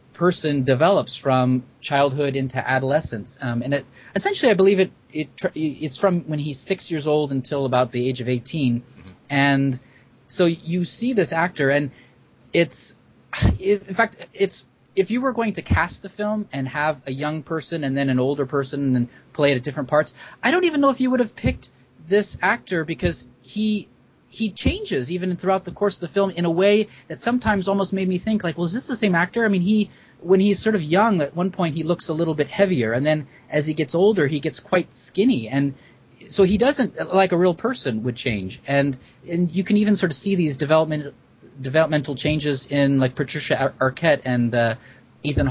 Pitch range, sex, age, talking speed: 135-195 Hz, male, 30-49, 210 wpm